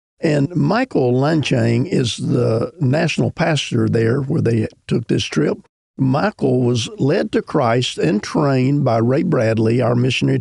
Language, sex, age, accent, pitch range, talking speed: English, male, 50-69, American, 120-155 Hz, 145 wpm